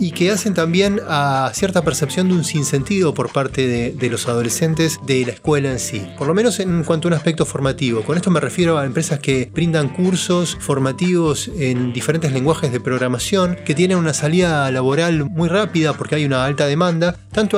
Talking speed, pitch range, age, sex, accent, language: 200 wpm, 135-175 Hz, 20-39, male, Argentinian, Spanish